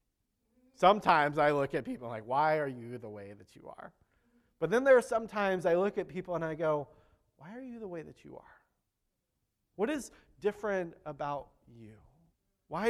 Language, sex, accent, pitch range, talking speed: English, male, American, 150-210 Hz, 185 wpm